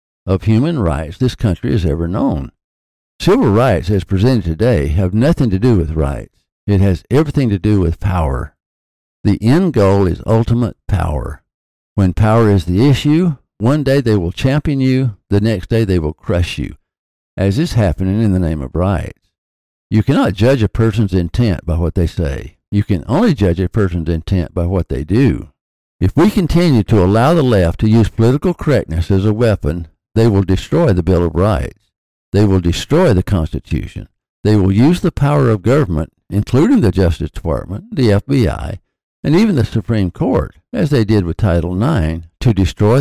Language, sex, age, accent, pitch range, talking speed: English, male, 60-79, American, 85-120 Hz, 185 wpm